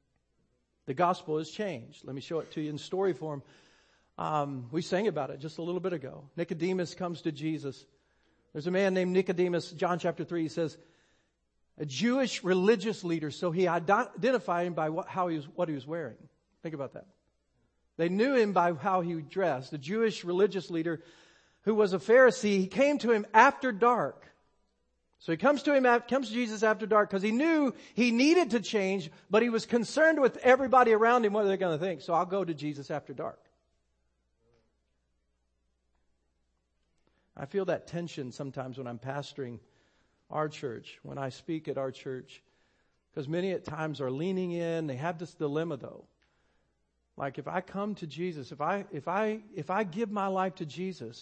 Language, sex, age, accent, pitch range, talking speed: English, male, 50-69, American, 150-205 Hz, 185 wpm